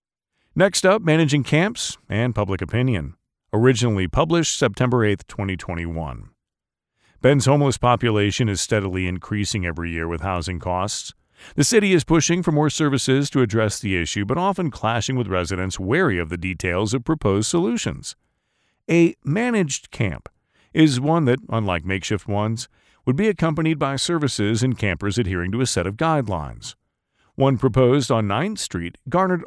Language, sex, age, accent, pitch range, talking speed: English, male, 40-59, American, 95-140 Hz, 150 wpm